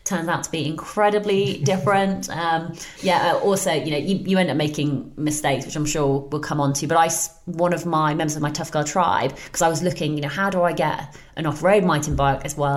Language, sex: English, female